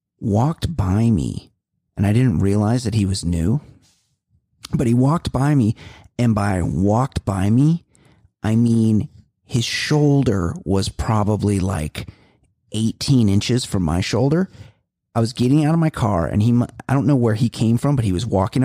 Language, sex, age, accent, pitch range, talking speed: English, male, 30-49, American, 105-135 Hz, 170 wpm